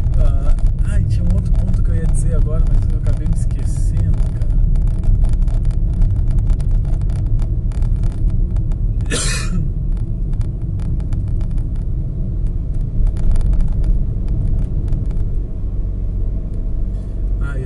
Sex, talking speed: male, 60 wpm